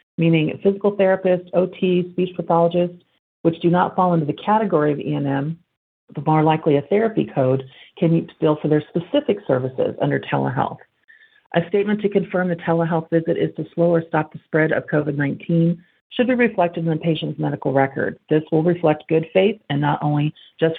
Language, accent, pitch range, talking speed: English, American, 150-185 Hz, 180 wpm